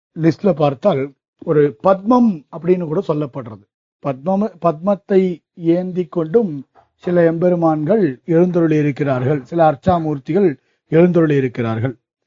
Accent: native